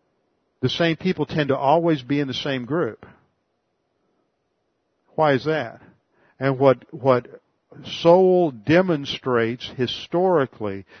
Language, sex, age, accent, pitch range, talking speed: English, male, 50-69, American, 125-160 Hz, 110 wpm